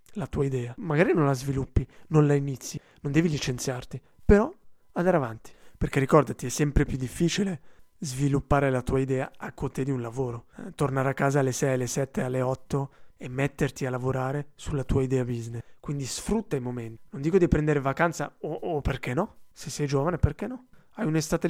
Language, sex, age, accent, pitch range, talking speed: Italian, male, 20-39, native, 135-170 Hz, 190 wpm